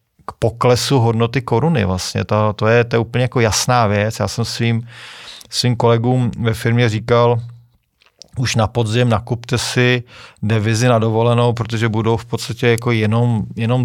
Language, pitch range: Czech, 105-120 Hz